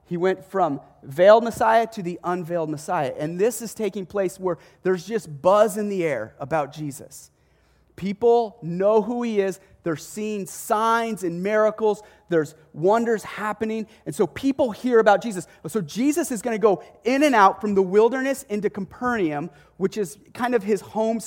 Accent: American